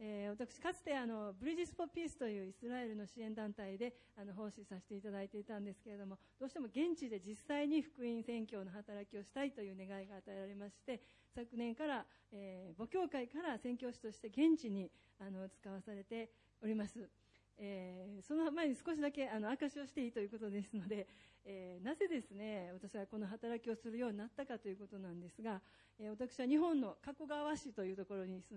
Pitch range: 200-270 Hz